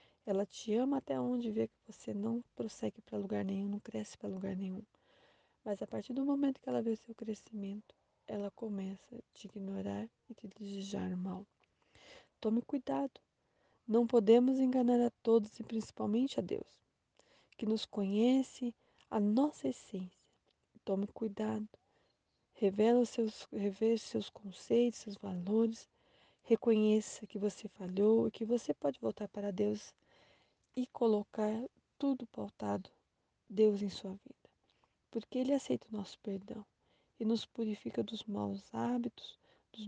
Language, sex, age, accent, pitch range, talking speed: Portuguese, female, 20-39, Brazilian, 200-235 Hz, 145 wpm